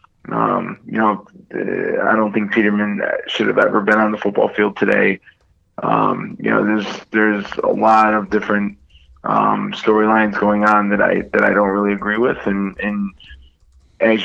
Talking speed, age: 170 wpm, 20-39